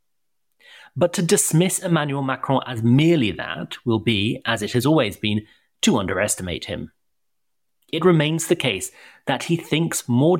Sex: male